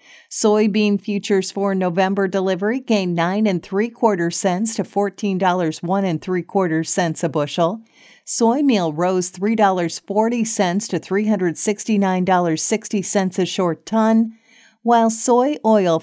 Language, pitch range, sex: English, 175-210 Hz, female